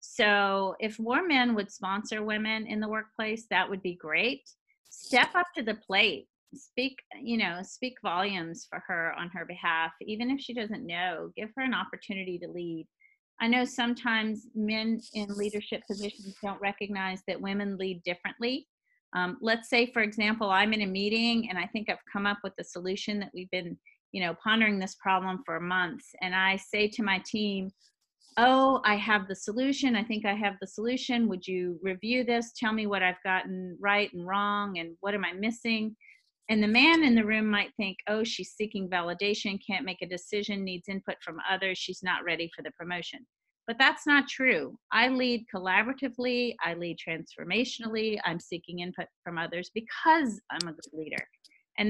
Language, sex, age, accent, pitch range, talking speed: English, female, 40-59, American, 185-230 Hz, 195 wpm